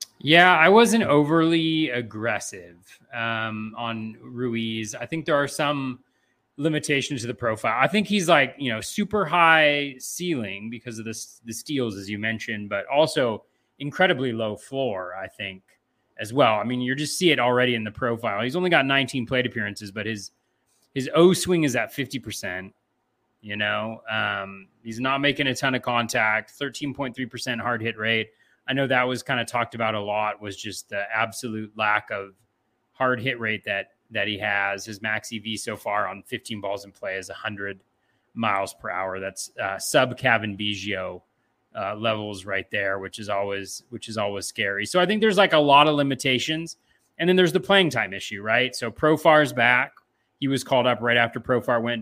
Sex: male